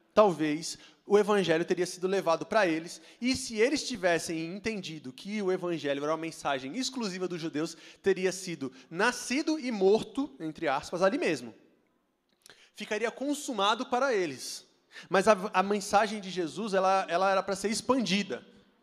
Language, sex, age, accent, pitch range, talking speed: Portuguese, male, 20-39, Brazilian, 175-230 Hz, 145 wpm